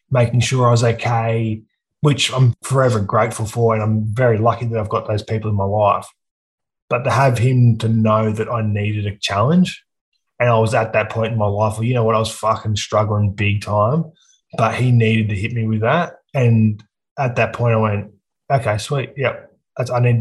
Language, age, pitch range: English, 20-39, 110-120 Hz